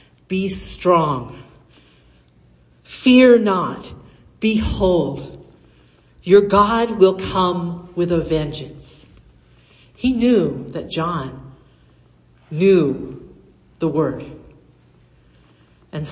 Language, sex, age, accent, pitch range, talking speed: English, female, 50-69, American, 130-180 Hz, 75 wpm